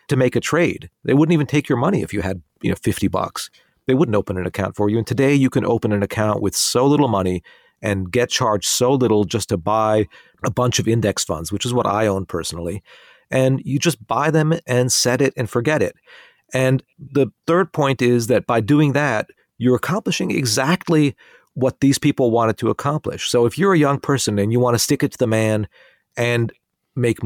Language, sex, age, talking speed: English, male, 40-59, 220 wpm